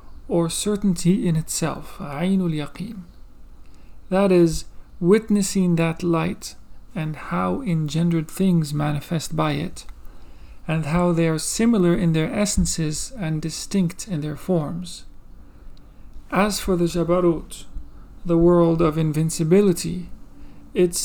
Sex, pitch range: male, 155-180 Hz